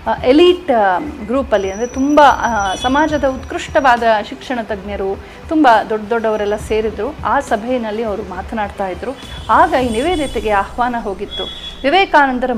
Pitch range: 215-280 Hz